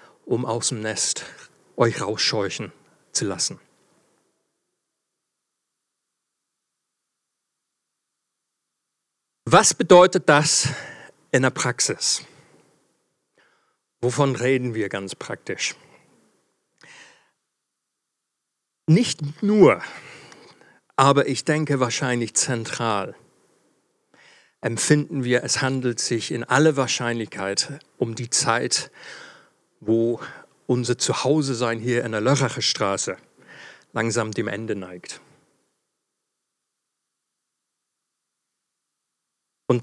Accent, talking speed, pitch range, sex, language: German, 75 wpm, 115-140 Hz, male, German